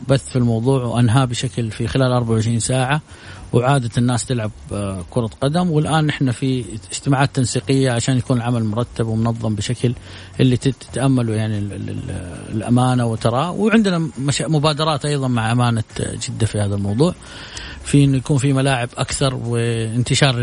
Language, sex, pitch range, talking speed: Arabic, male, 120-160 Hz, 140 wpm